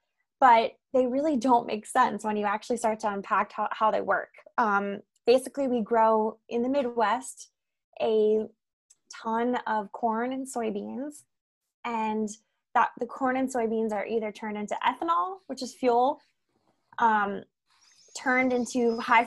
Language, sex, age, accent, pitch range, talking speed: English, female, 20-39, American, 215-255 Hz, 145 wpm